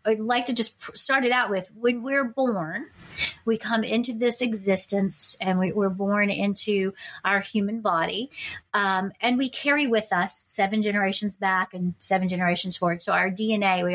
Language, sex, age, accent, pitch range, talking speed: English, female, 30-49, American, 180-215 Hz, 175 wpm